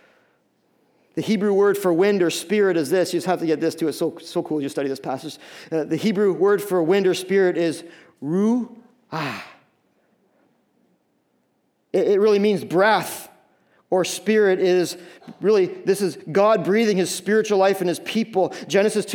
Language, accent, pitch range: English, American, 175-205 Hz